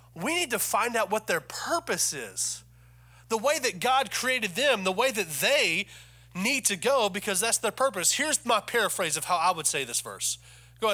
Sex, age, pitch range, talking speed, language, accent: male, 30-49, 150-235 Hz, 210 wpm, English, American